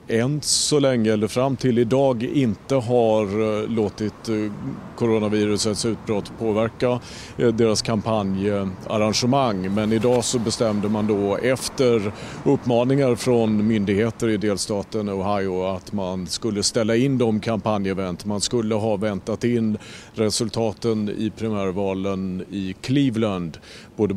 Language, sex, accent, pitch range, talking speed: Swedish, male, Norwegian, 100-115 Hz, 115 wpm